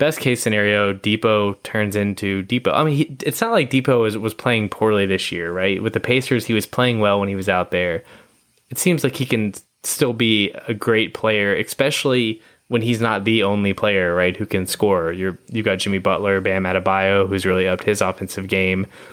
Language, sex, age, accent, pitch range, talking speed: English, male, 20-39, American, 95-115 Hz, 210 wpm